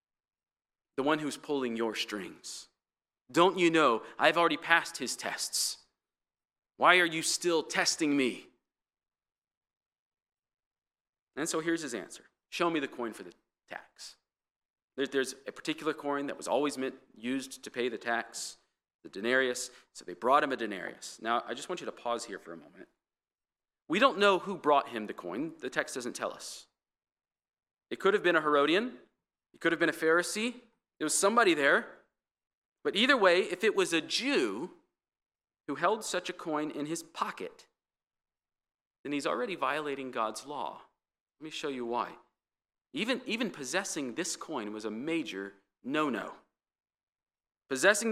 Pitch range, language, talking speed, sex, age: 135-195 Hz, English, 160 wpm, male, 40-59